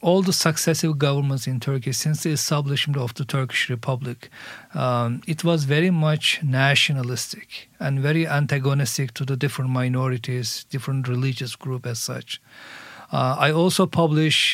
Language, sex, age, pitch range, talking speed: Swedish, male, 50-69, 130-155 Hz, 145 wpm